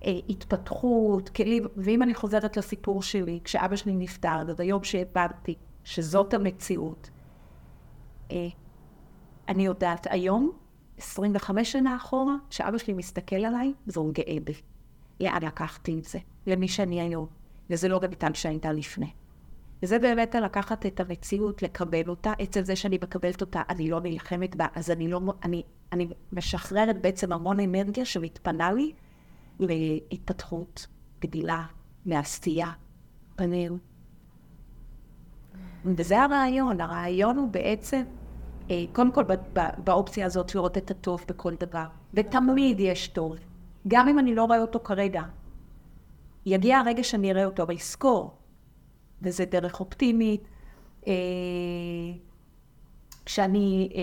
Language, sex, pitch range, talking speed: Hebrew, female, 170-210 Hz, 120 wpm